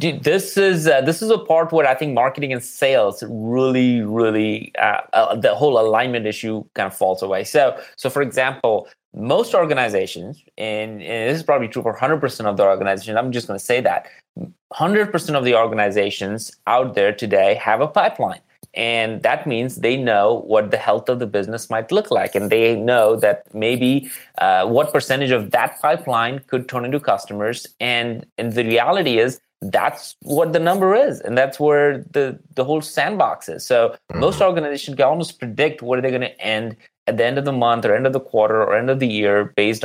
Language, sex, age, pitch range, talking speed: English, male, 30-49, 115-145 Hz, 200 wpm